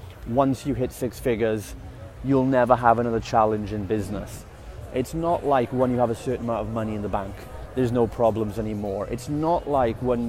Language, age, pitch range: English, 30-49, 105-125 Hz